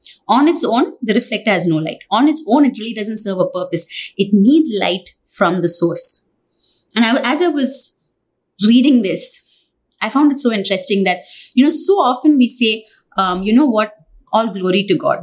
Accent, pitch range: Indian, 195-270 Hz